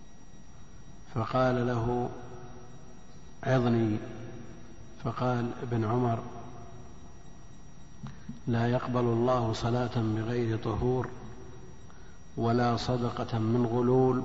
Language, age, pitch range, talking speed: Arabic, 50-69, 110-125 Hz, 65 wpm